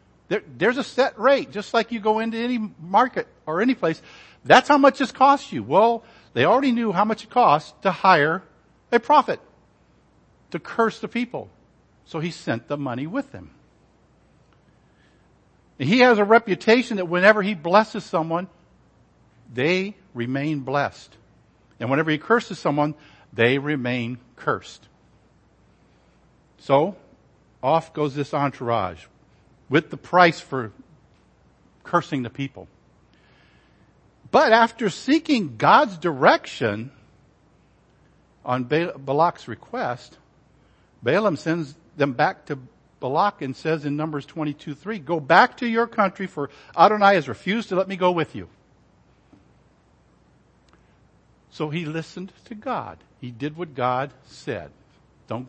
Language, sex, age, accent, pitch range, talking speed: English, male, 50-69, American, 140-215 Hz, 135 wpm